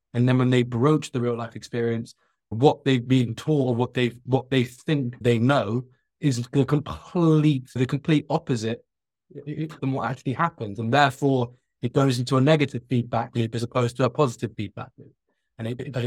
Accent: British